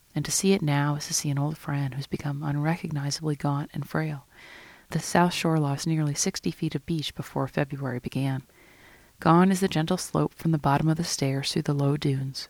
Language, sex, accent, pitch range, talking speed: English, female, American, 140-170 Hz, 210 wpm